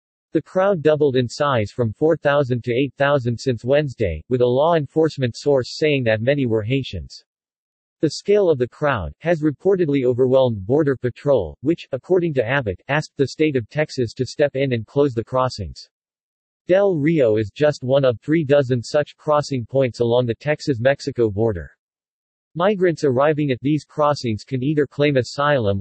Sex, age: male, 50-69